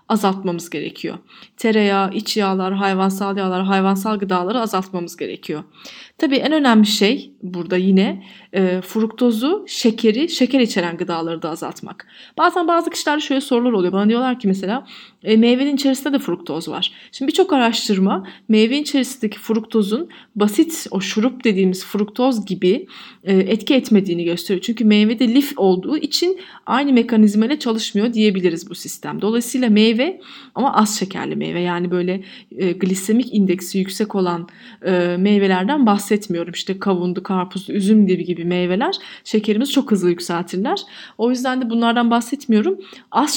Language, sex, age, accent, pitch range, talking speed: Turkish, female, 30-49, native, 185-240 Hz, 135 wpm